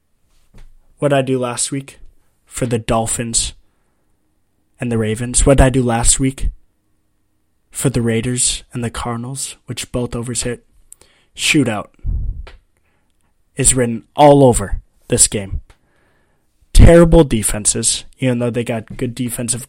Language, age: English, 20-39